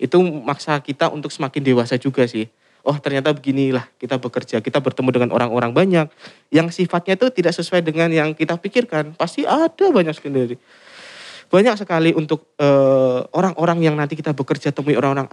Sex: male